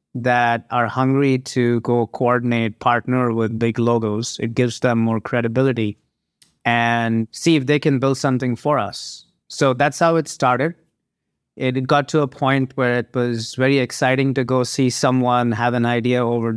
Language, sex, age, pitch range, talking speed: English, male, 30-49, 120-135 Hz, 170 wpm